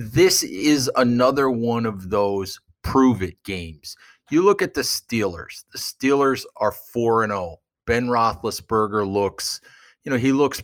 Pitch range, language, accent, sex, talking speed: 105-130 Hz, English, American, male, 150 wpm